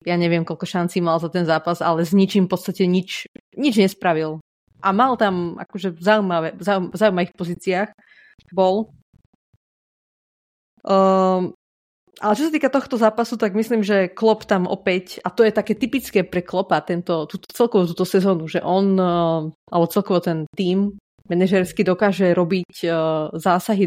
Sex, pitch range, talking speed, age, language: female, 175-205 Hz, 155 wpm, 30-49, Slovak